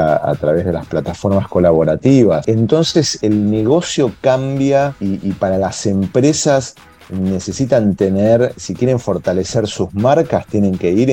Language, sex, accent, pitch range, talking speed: Spanish, male, Argentinian, 90-120 Hz, 140 wpm